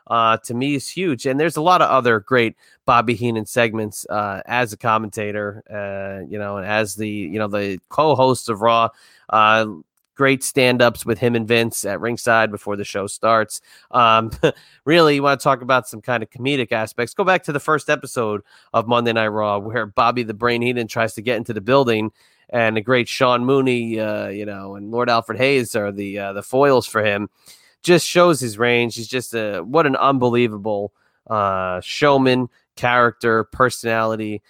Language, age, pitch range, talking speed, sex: English, 30-49, 105-130 Hz, 190 wpm, male